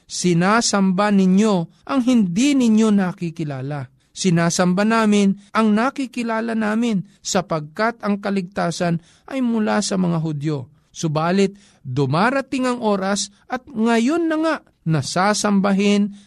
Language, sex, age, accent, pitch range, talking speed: Filipino, male, 50-69, native, 165-225 Hz, 105 wpm